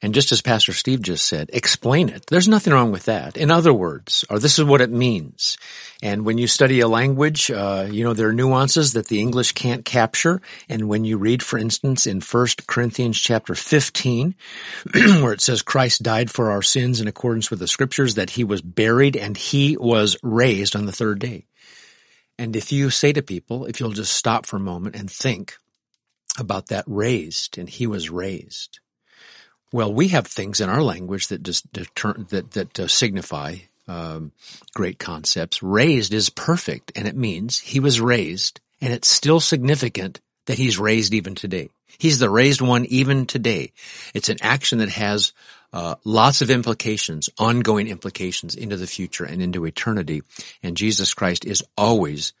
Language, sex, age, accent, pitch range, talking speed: English, male, 50-69, American, 100-130 Hz, 185 wpm